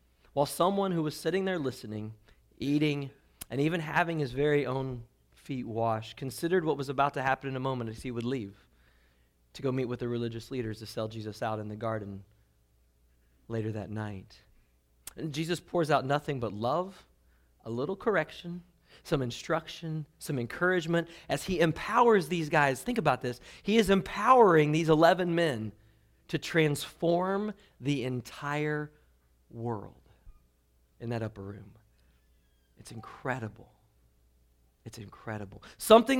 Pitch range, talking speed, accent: 100-165 Hz, 145 wpm, American